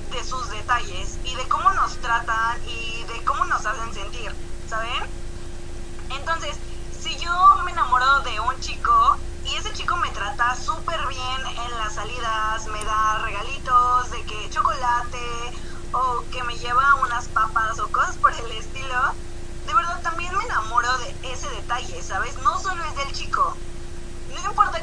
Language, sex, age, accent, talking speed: Spanish, female, 20-39, Mexican, 160 wpm